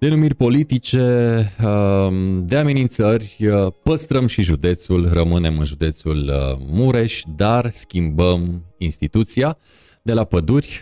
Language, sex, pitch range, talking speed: Romanian, male, 80-115 Hz, 95 wpm